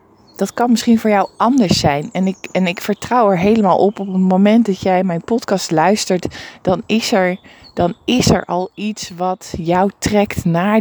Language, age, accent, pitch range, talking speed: Dutch, 20-39, Dutch, 175-220 Hz, 195 wpm